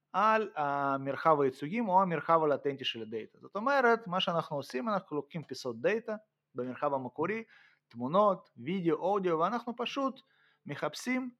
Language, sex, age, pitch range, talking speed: Hebrew, male, 30-49, 140-210 Hz, 130 wpm